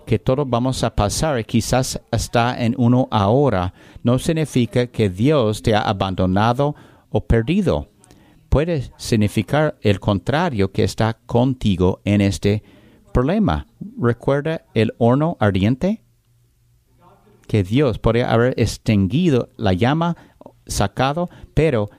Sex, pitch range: male, 100-130 Hz